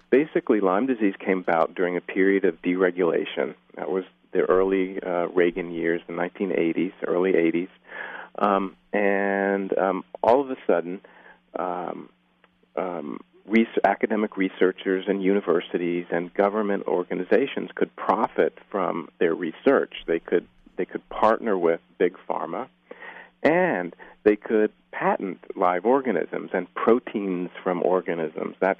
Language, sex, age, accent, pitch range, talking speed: English, male, 40-59, American, 90-105 Hz, 125 wpm